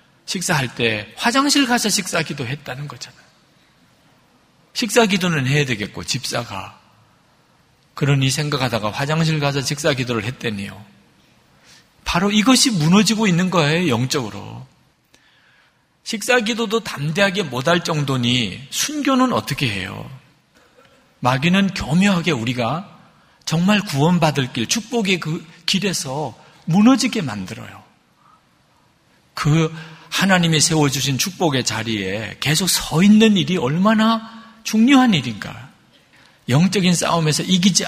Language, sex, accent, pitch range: Korean, male, native, 125-200 Hz